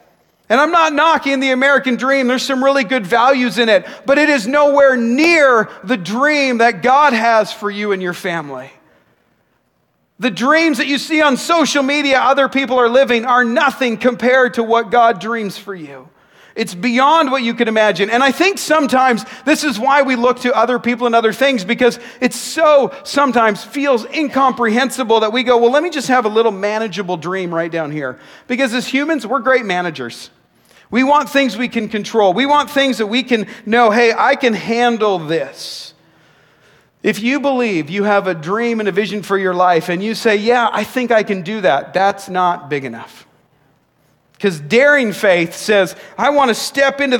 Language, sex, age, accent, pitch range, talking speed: English, male, 40-59, American, 205-270 Hz, 195 wpm